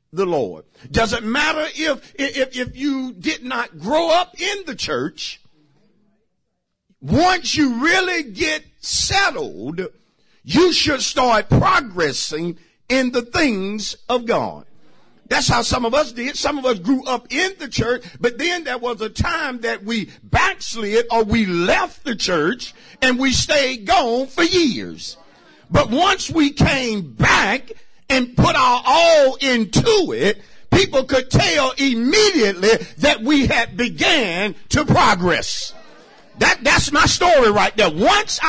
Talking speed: 145 wpm